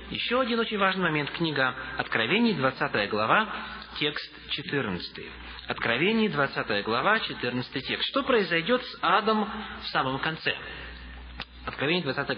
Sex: male